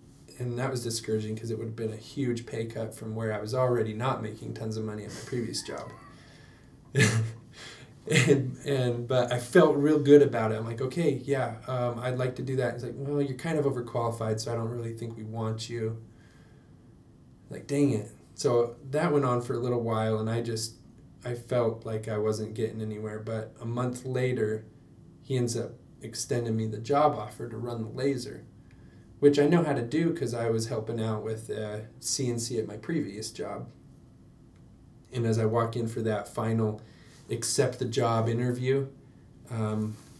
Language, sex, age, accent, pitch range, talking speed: English, male, 20-39, American, 110-130 Hz, 195 wpm